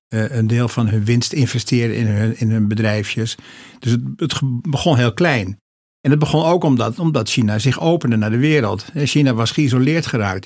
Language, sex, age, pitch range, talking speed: Dutch, male, 50-69, 105-125 Hz, 185 wpm